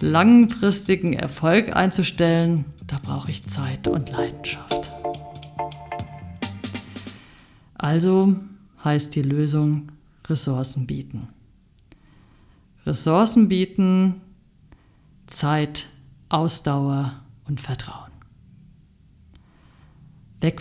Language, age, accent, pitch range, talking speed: German, 50-69, German, 140-190 Hz, 65 wpm